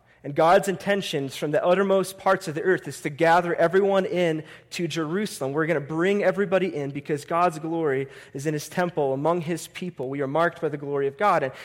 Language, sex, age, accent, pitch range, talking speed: English, male, 30-49, American, 130-170 Hz, 215 wpm